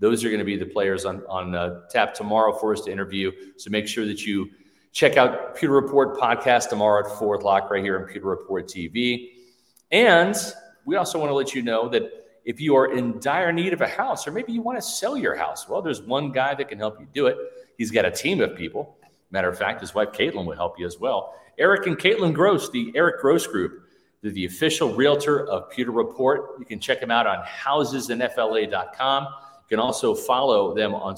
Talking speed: 225 wpm